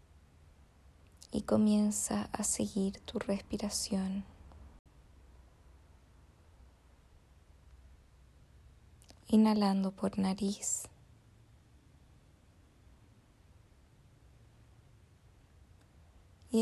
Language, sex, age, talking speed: Spanish, female, 20-39, 35 wpm